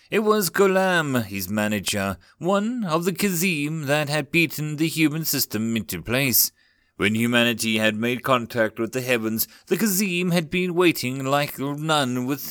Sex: male